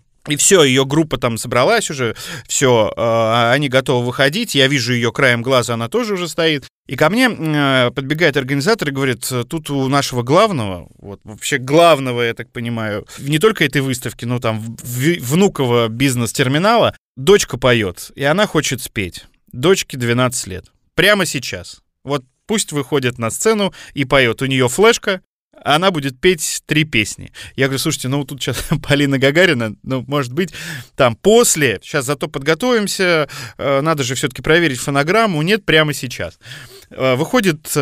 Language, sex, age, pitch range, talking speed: Russian, male, 20-39, 125-160 Hz, 150 wpm